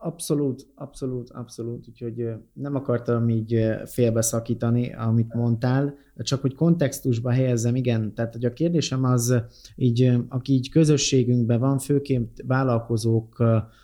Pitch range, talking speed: 120-135 Hz, 115 wpm